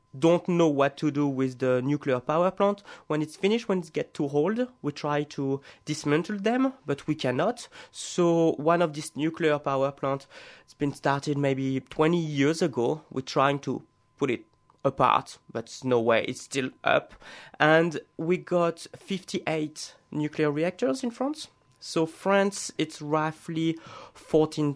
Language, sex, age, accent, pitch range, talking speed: English, male, 20-39, French, 135-170 Hz, 160 wpm